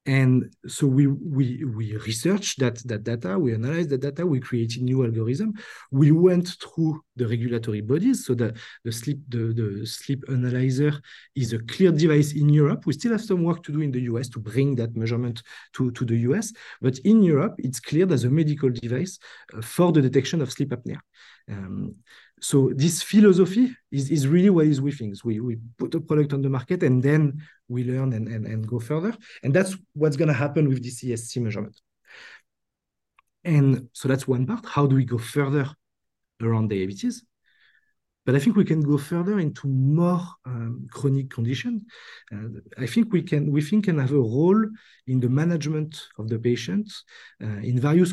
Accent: French